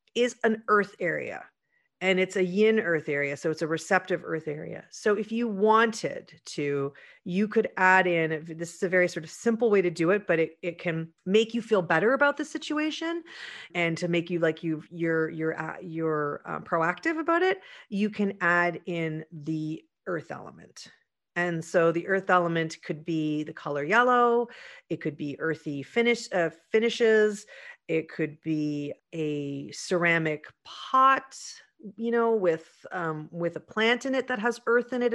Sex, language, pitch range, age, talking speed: female, English, 160-220 Hz, 40-59, 180 wpm